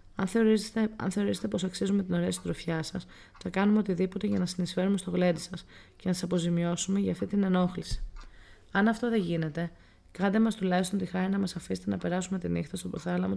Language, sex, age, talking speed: Greek, female, 20-39, 200 wpm